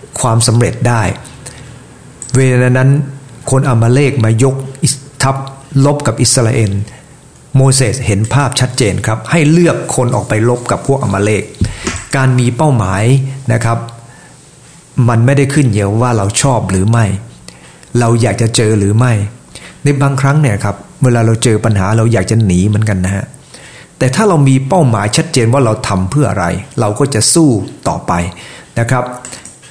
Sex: male